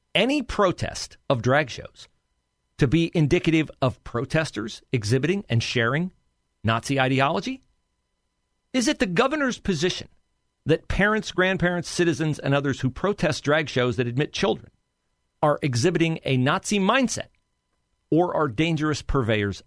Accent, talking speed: American, 130 wpm